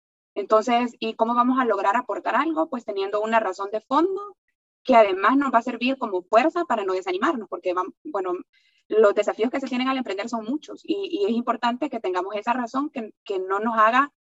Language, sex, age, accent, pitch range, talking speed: Spanish, female, 20-39, Venezuelan, 200-255 Hz, 210 wpm